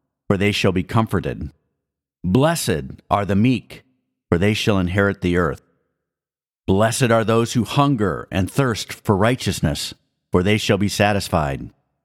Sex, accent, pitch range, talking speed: male, American, 95-120 Hz, 145 wpm